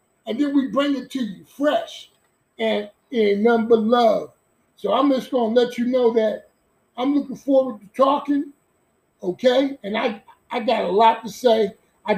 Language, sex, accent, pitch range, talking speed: English, male, American, 205-245 Hz, 175 wpm